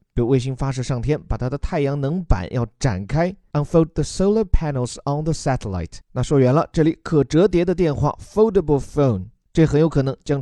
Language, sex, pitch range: Chinese, male, 125-170 Hz